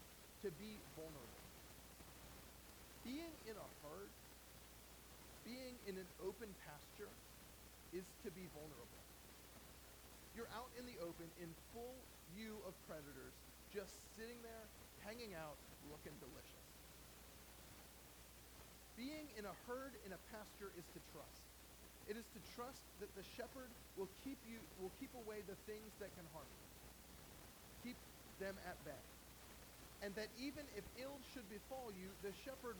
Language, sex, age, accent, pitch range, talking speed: English, male, 40-59, American, 155-220 Hz, 140 wpm